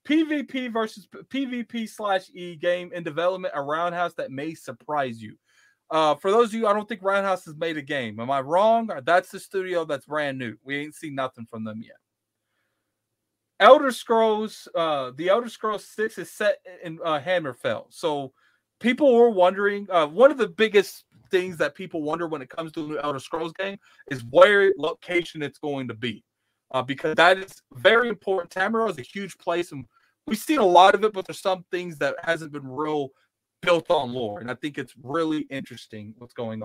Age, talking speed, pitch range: 30-49, 195 wpm, 140-210 Hz